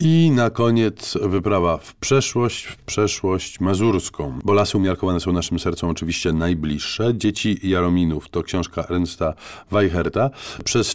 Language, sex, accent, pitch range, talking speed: Polish, male, native, 85-105 Hz, 130 wpm